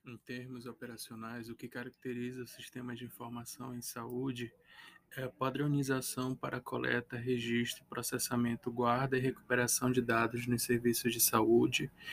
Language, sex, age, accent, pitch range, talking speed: Portuguese, male, 20-39, Brazilian, 120-125 Hz, 145 wpm